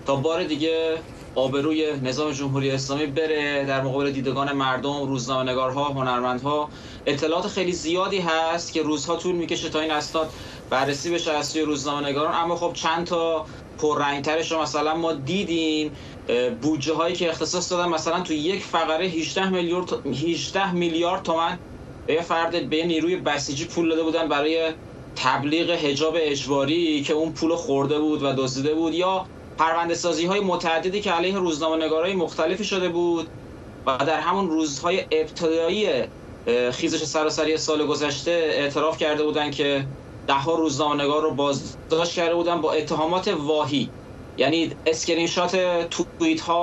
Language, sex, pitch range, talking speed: Persian, male, 145-170 Hz, 135 wpm